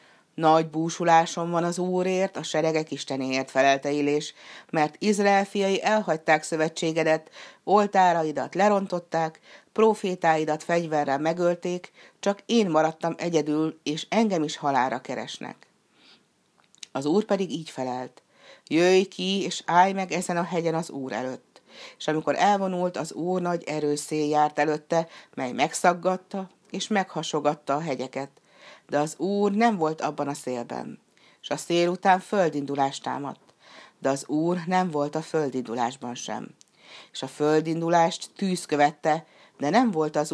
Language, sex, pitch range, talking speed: Hungarian, female, 145-185 Hz, 135 wpm